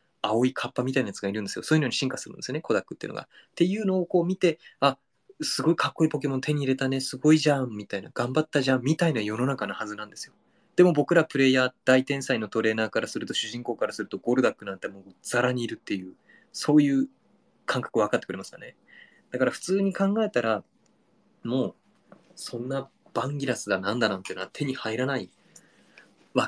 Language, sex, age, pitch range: Japanese, male, 20-39, 115-175 Hz